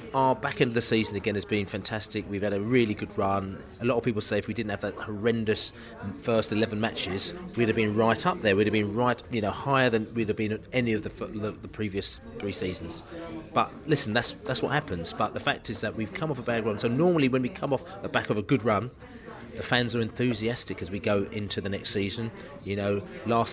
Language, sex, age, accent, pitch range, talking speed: English, male, 30-49, British, 105-125 Hz, 250 wpm